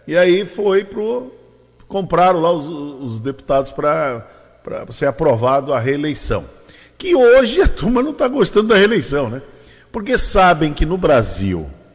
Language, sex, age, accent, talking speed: Portuguese, male, 50-69, Brazilian, 150 wpm